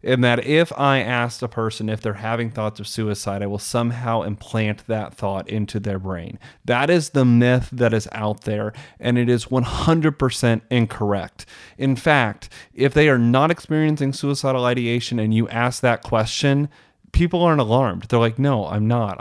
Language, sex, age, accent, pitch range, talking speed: English, male, 30-49, American, 115-145 Hz, 180 wpm